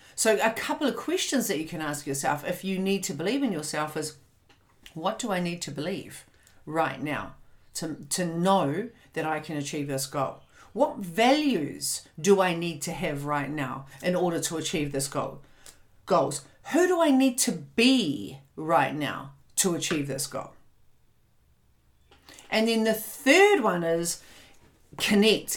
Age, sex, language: 50-69, female, English